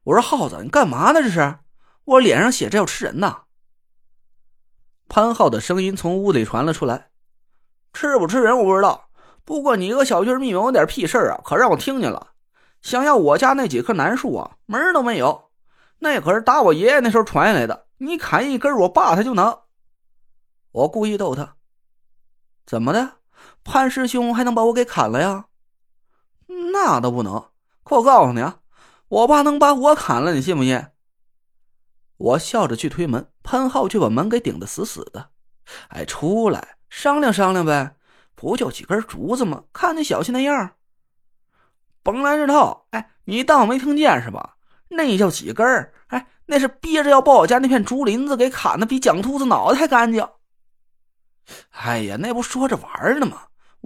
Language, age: Chinese, 20-39